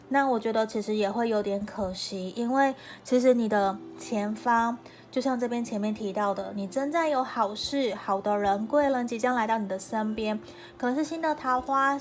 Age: 20-39